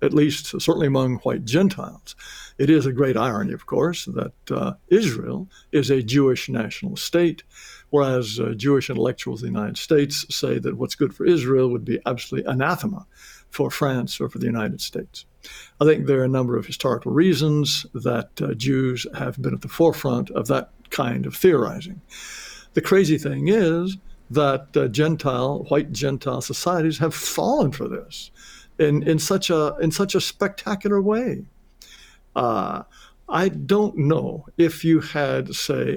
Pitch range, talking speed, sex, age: 135-170 Hz, 165 wpm, male, 60-79